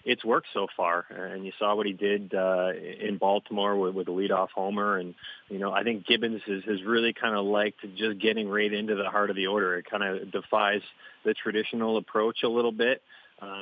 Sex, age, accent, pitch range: male, 30-49, American, 95-110 Hz